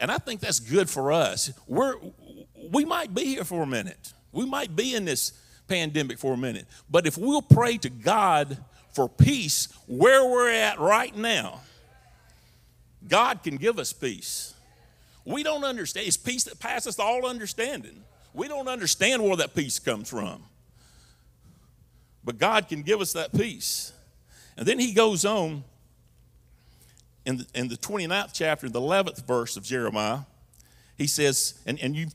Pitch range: 140-225 Hz